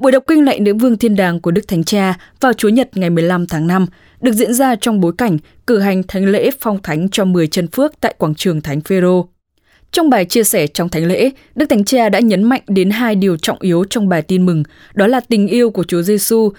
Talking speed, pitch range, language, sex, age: 245 wpm, 175-235 Hz, English, female, 10-29